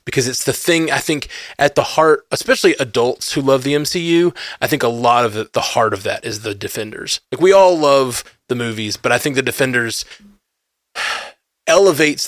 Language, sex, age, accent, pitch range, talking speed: English, male, 20-39, American, 110-140 Hz, 190 wpm